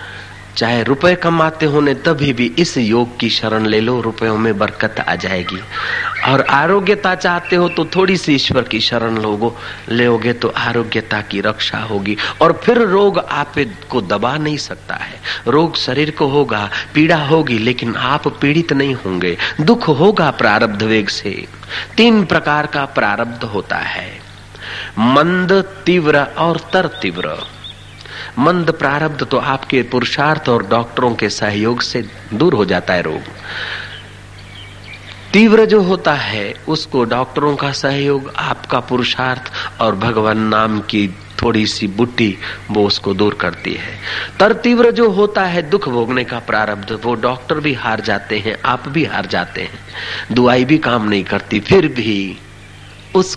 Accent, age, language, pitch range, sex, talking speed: native, 40-59, Hindi, 105-155 Hz, male, 150 wpm